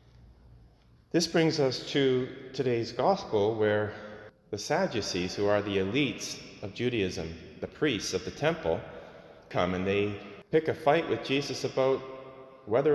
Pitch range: 100-130 Hz